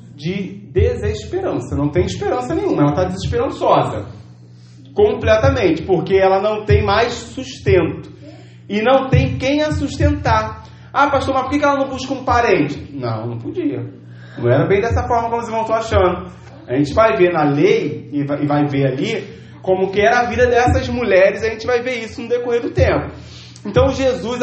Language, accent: Portuguese, Brazilian